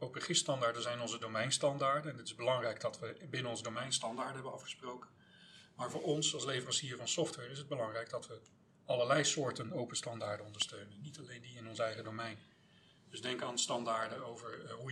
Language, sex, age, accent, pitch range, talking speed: Dutch, male, 40-59, Dutch, 115-155 Hz, 185 wpm